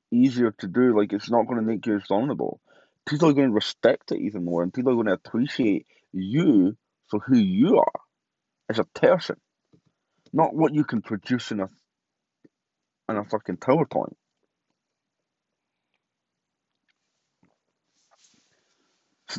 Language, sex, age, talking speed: English, male, 30-49, 140 wpm